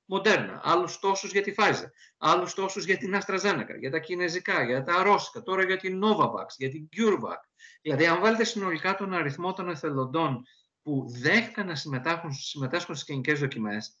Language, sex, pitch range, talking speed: Greek, male, 145-200 Hz, 165 wpm